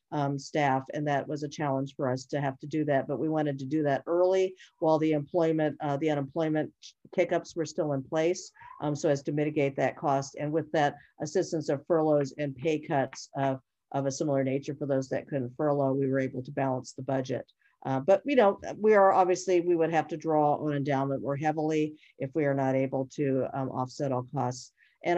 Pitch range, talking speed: 135-155 Hz, 220 wpm